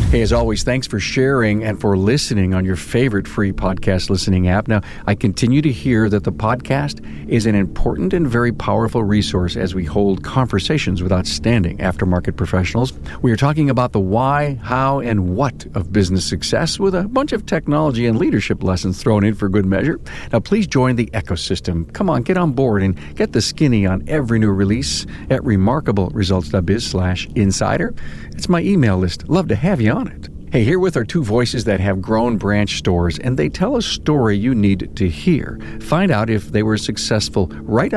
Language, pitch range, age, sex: English, 95-130 Hz, 50-69, male